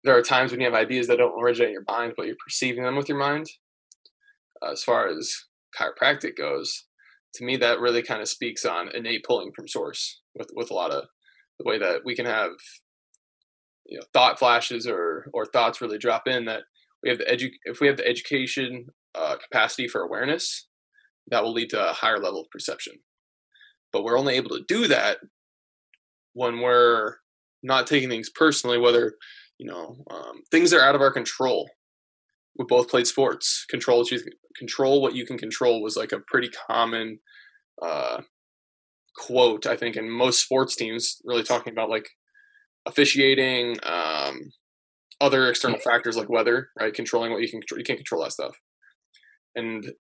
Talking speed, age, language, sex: 180 wpm, 20-39, English, male